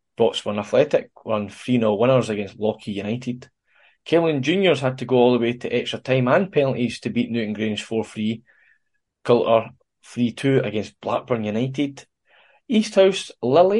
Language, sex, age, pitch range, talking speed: English, male, 10-29, 110-140 Hz, 150 wpm